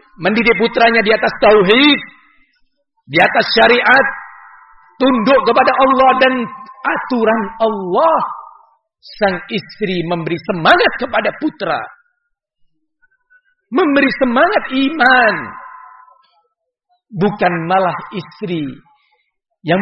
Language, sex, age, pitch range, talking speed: Malay, male, 50-69, 215-310 Hz, 80 wpm